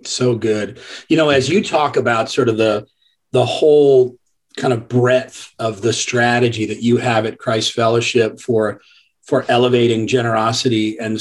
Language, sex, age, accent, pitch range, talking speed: English, male, 40-59, American, 110-130 Hz, 160 wpm